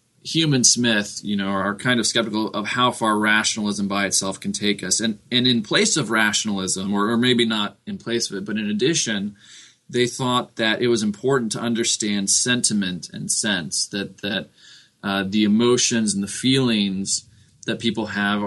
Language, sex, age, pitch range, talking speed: English, male, 20-39, 100-120 Hz, 185 wpm